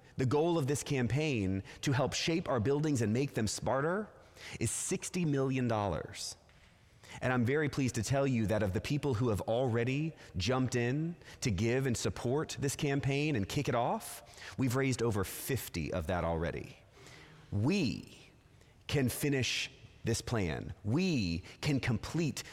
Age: 30-49